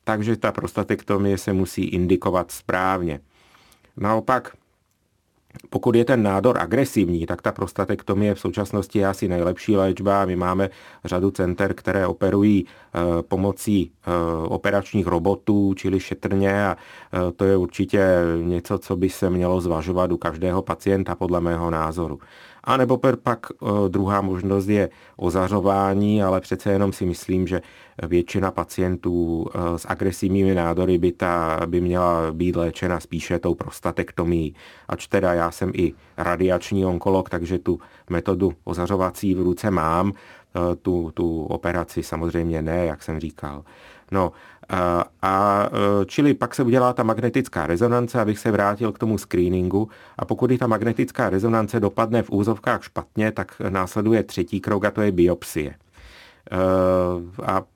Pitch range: 85-100 Hz